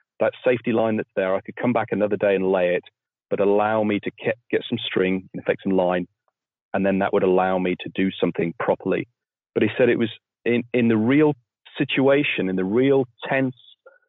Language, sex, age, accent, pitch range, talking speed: English, male, 40-59, British, 95-110 Hz, 215 wpm